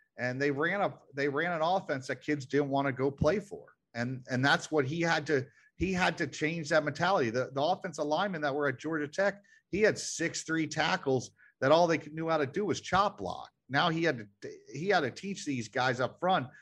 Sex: male